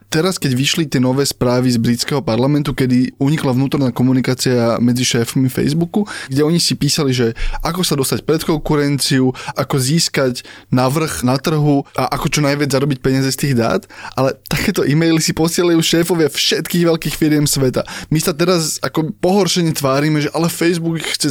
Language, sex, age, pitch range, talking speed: Slovak, male, 20-39, 125-160 Hz, 170 wpm